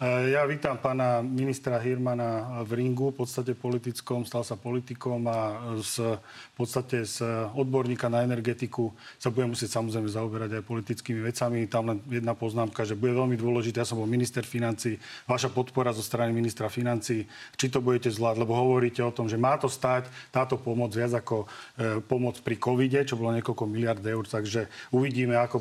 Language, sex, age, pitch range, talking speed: Slovak, male, 40-59, 120-135 Hz, 175 wpm